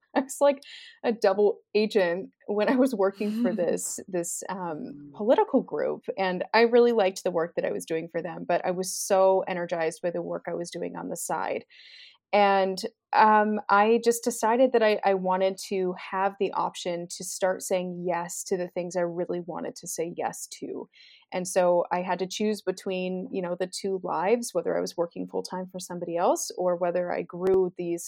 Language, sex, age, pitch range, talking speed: English, female, 30-49, 175-210 Hz, 200 wpm